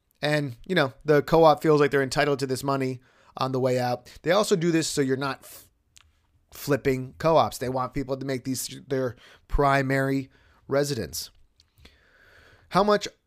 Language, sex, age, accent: English, male, 30-49, American